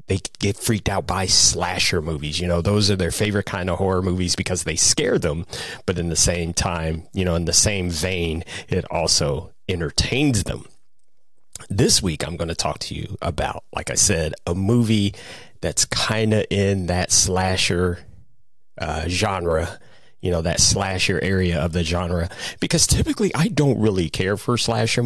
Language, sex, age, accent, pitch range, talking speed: English, male, 30-49, American, 90-110 Hz, 175 wpm